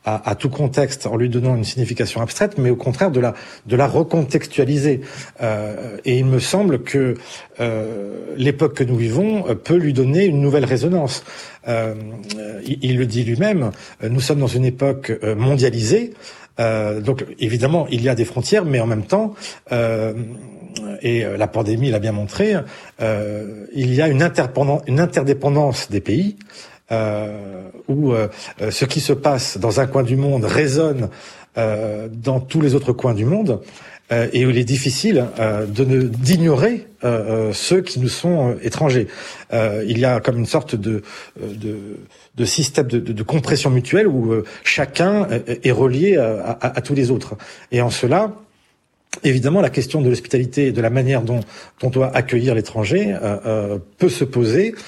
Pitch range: 115-145 Hz